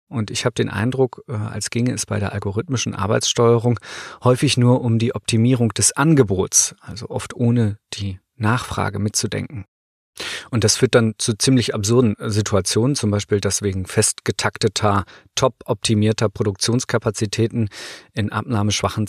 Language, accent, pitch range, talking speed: German, German, 105-125 Hz, 130 wpm